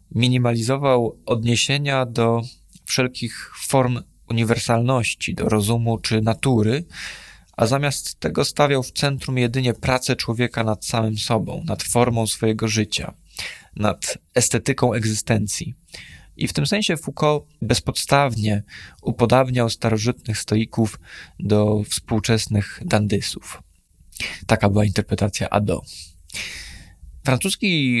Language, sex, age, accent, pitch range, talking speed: Polish, male, 20-39, native, 105-120 Hz, 100 wpm